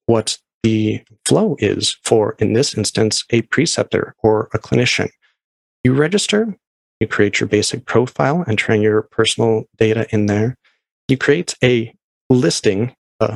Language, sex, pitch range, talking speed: English, male, 105-125 Hz, 145 wpm